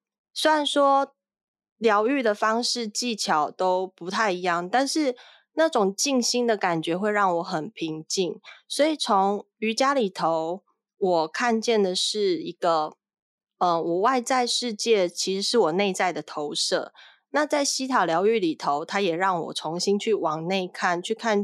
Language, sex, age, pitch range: Chinese, female, 20-39, 180-235 Hz